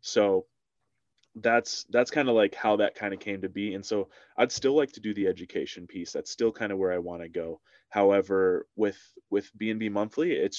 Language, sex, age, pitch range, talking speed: English, male, 20-39, 95-110 Hz, 215 wpm